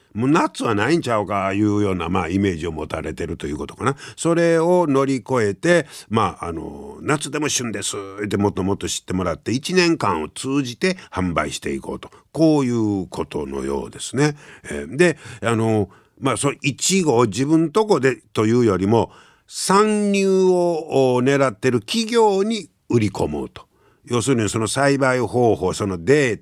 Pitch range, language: 100-150 Hz, Japanese